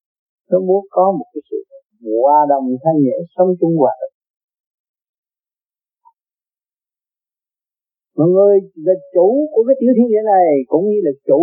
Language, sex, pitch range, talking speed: Vietnamese, male, 175-235 Hz, 140 wpm